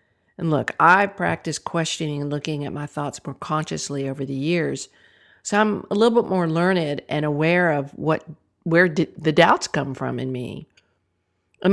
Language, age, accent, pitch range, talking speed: English, 50-69, American, 135-180 Hz, 180 wpm